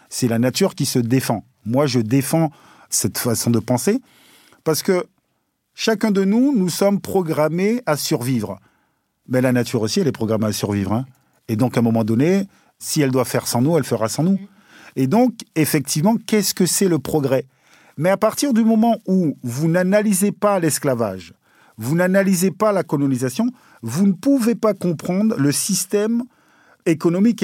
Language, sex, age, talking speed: French, male, 40-59, 175 wpm